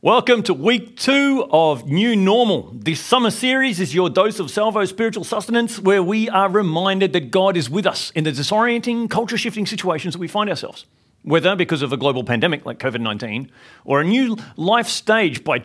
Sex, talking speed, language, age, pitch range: male, 190 wpm, English, 40-59, 155-215 Hz